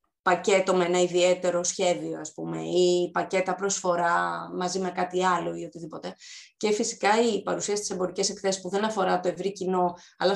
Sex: female